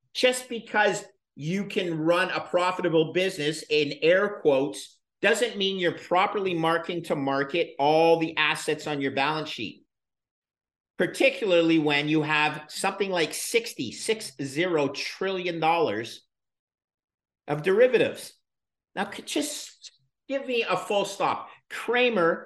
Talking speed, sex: 120 wpm, male